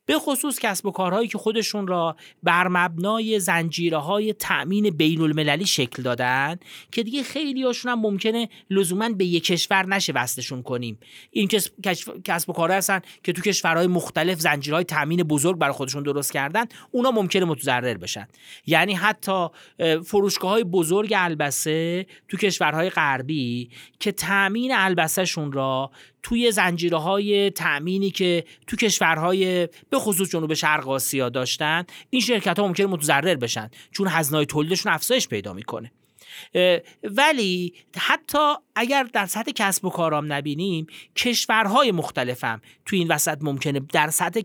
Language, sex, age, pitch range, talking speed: Persian, male, 40-59, 155-205 Hz, 140 wpm